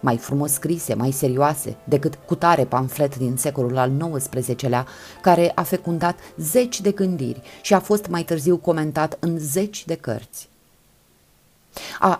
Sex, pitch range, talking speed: female, 135-185 Hz, 145 wpm